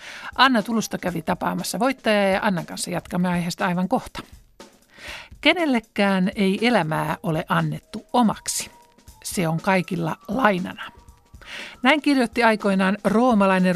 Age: 60-79